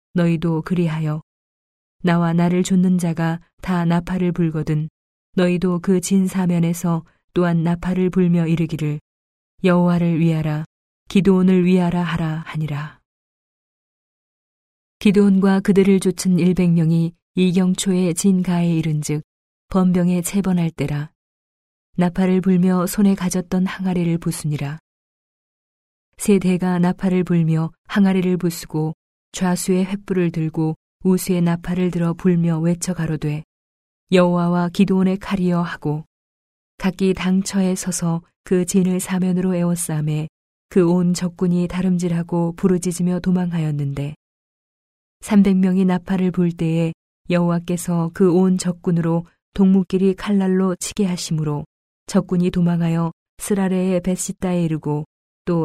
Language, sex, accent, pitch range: Korean, female, native, 165-185 Hz